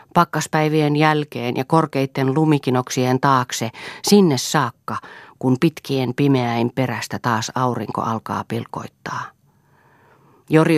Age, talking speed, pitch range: 40-59, 95 wpm, 120-150 Hz